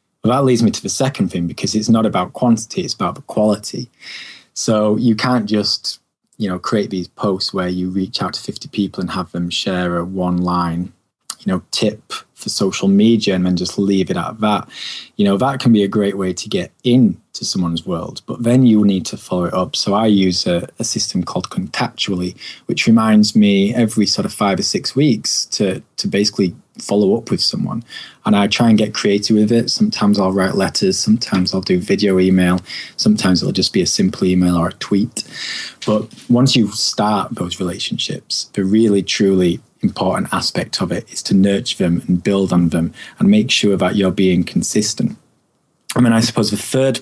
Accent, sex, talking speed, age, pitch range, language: British, male, 205 wpm, 20-39, 90-115 Hz, English